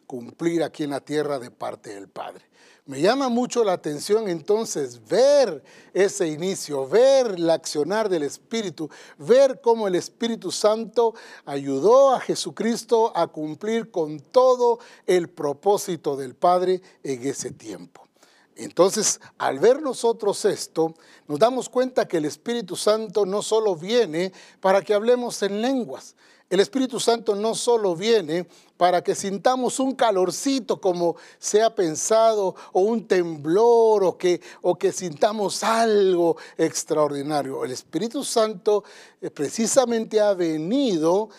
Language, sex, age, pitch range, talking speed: Spanish, male, 60-79, 165-230 Hz, 135 wpm